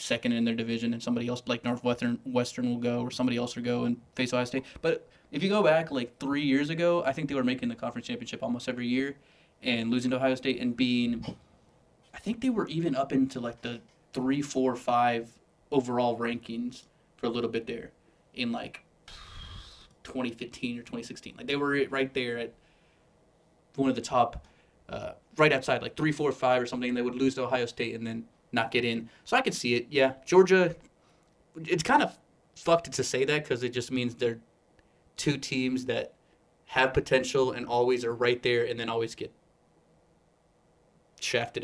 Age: 20-39